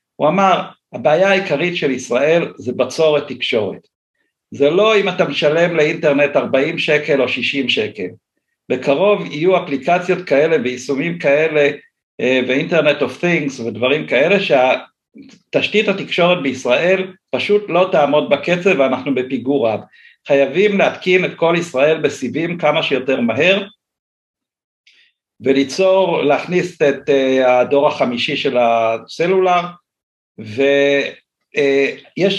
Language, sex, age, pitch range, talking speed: Hebrew, male, 60-79, 140-190 Hz, 110 wpm